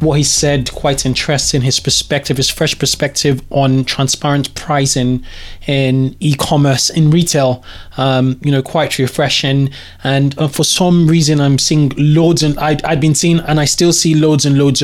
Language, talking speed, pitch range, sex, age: English, 165 wpm, 135-155 Hz, male, 20-39